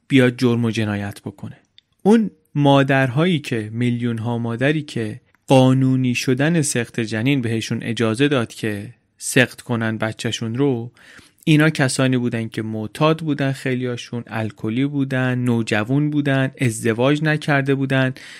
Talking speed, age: 125 wpm, 30-49